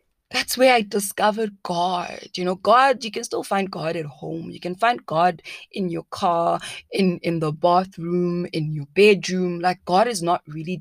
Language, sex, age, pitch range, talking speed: English, female, 20-39, 175-225 Hz, 190 wpm